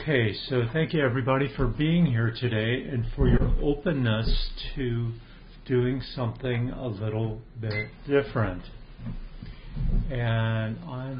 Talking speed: 120 wpm